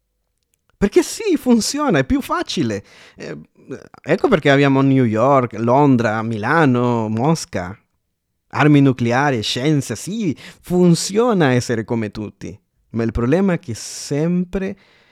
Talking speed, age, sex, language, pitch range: 115 wpm, 30-49, male, Italian, 100-140 Hz